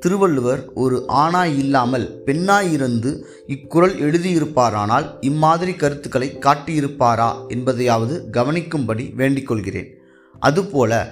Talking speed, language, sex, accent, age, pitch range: 75 wpm, Tamil, male, native, 20-39, 120-155 Hz